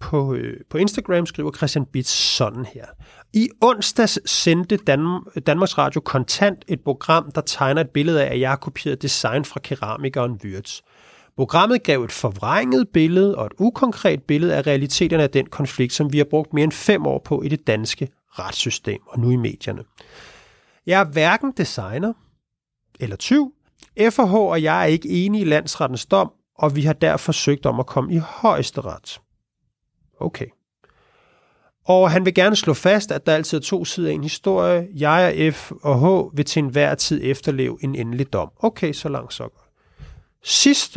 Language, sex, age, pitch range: Danish, male, 30-49, 140-190 Hz